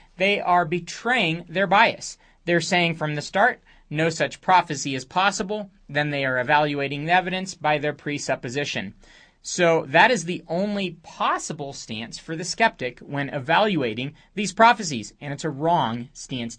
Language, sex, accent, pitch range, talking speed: English, male, American, 145-205 Hz, 155 wpm